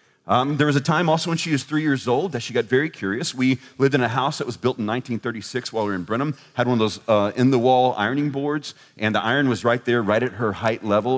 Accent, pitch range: American, 110-140 Hz